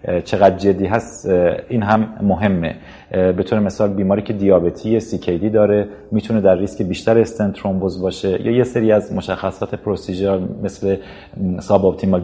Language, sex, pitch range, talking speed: Persian, male, 95-115 Hz, 145 wpm